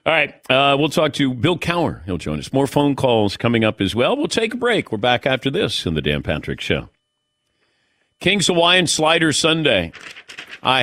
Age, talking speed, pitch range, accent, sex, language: 50-69, 200 wpm, 105-145 Hz, American, male, English